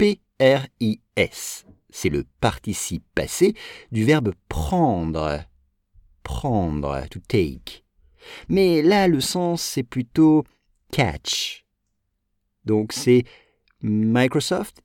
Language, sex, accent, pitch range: English, male, French, 90-135 Hz